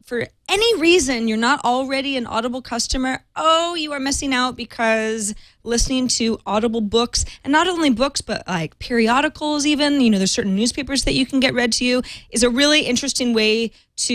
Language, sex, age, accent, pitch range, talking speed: English, female, 20-39, American, 220-280 Hz, 190 wpm